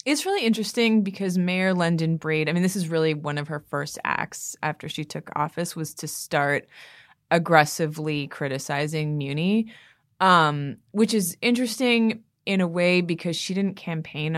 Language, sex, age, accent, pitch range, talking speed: English, female, 20-39, American, 150-185 Hz, 160 wpm